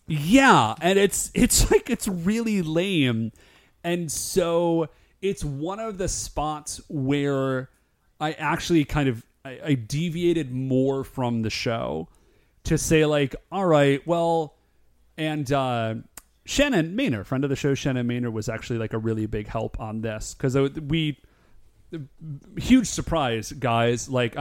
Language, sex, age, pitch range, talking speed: English, male, 30-49, 115-150 Hz, 145 wpm